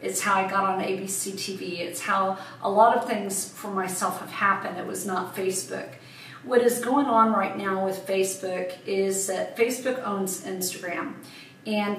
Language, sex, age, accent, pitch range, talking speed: English, female, 40-59, American, 195-225 Hz, 175 wpm